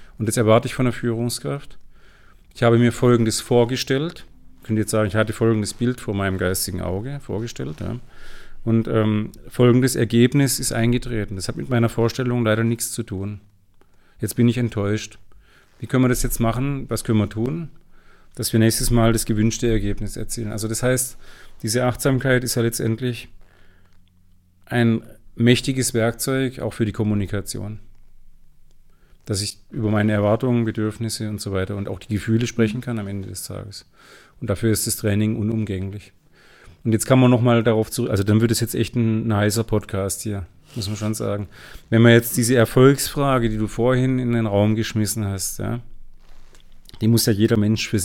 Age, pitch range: 40-59, 105-120 Hz